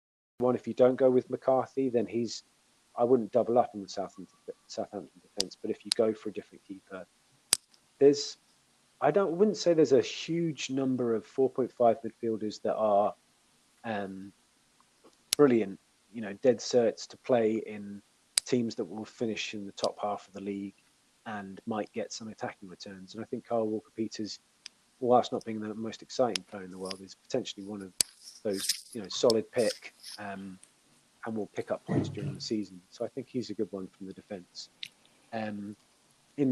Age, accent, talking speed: 30-49, British, 185 wpm